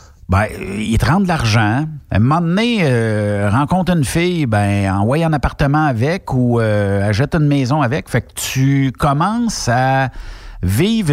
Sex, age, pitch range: male, 60-79, 100-150 Hz